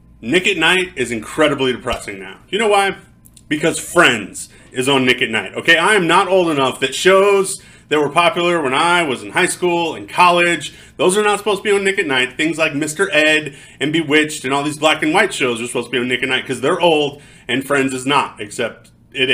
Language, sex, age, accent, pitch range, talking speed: English, male, 30-49, American, 120-170 Hz, 235 wpm